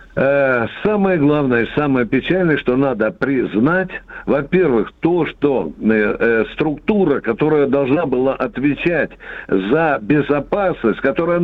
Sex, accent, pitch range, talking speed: male, native, 135-185 Hz, 100 wpm